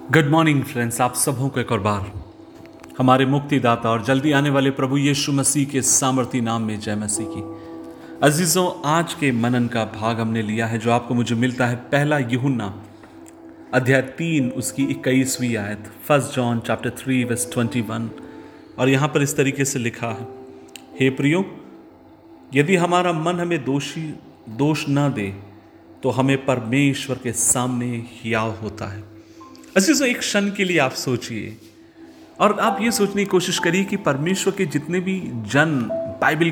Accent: native